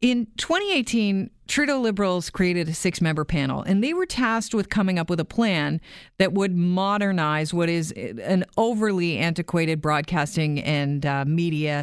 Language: English